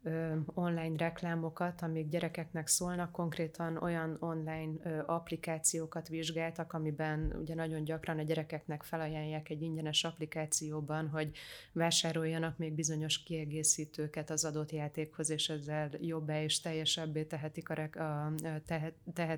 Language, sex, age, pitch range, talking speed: Hungarian, female, 30-49, 155-165 Hz, 110 wpm